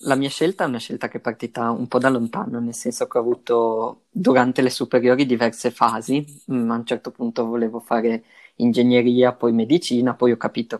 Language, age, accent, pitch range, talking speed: Italian, 20-39, native, 115-130 Hz, 195 wpm